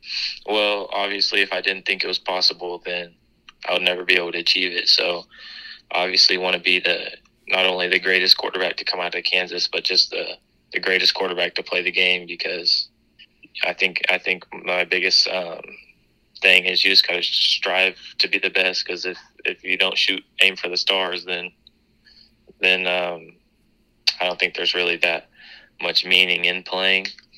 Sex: male